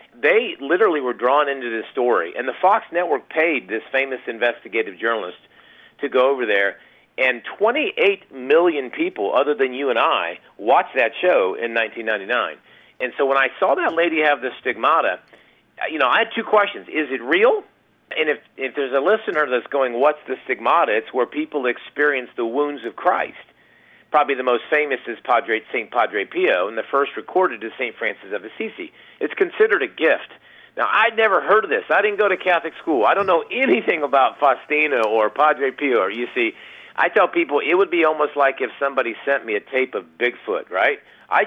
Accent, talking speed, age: American, 195 wpm, 50-69